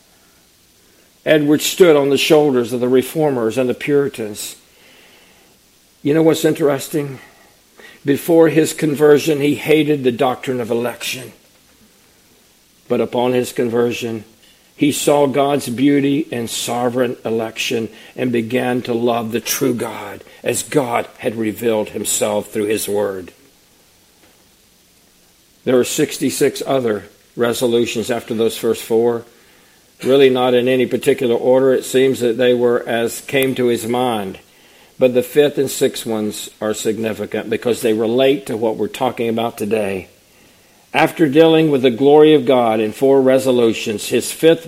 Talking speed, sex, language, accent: 140 wpm, male, English, American